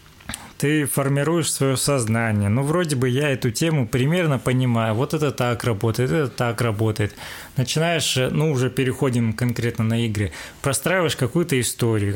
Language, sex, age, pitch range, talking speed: Russian, male, 20-39, 110-135 Hz, 145 wpm